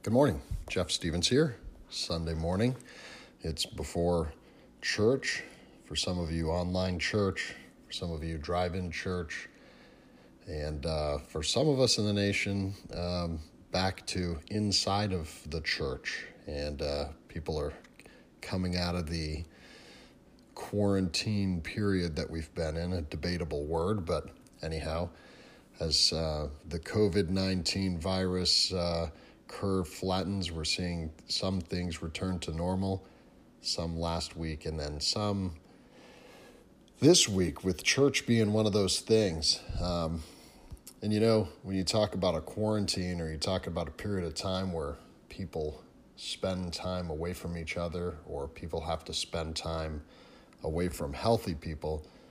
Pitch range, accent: 80-95 Hz, American